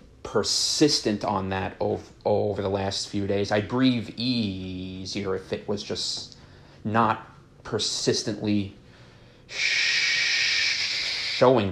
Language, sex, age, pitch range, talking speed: English, male, 30-49, 100-120 Hz, 100 wpm